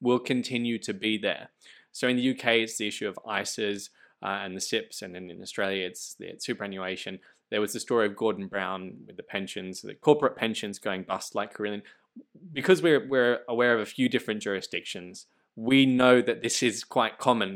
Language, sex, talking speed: English, male, 200 wpm